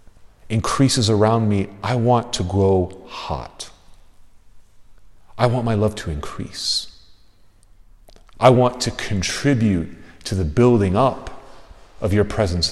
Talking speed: 120 wpm